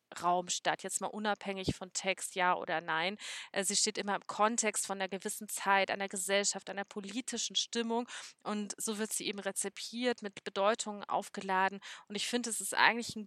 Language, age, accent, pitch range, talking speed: German, 20-39, German, 190-235 Hz, 180 wpm